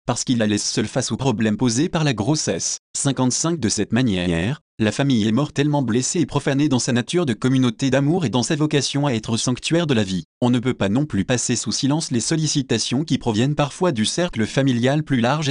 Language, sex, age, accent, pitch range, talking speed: French, male, 30-49, French, 115-150 Hz, 225 wpm